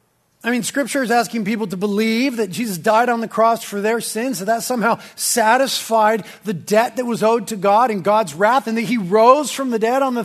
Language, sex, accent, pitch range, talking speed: English, male, American, 180-240 Hz, 235 wpm